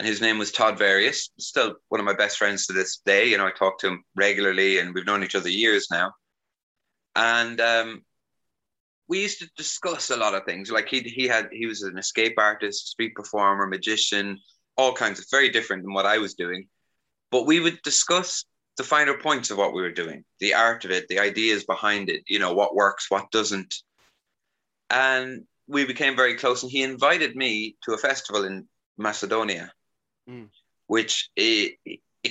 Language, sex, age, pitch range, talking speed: English, male, 20-39, 100-130 Hz, 190 wpm